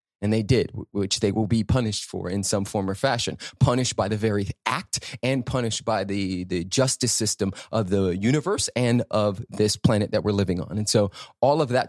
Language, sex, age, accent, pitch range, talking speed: English, male, 30-49, American, 100-120 Hz, 210 wpm